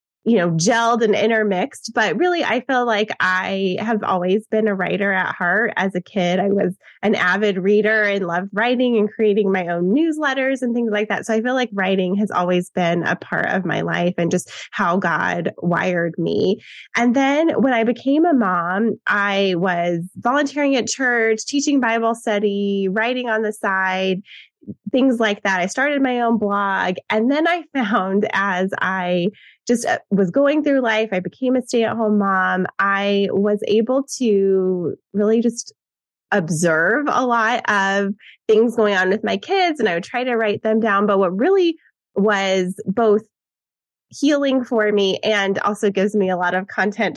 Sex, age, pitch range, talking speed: female, 20-39, 190-240 Hz, 180 wpm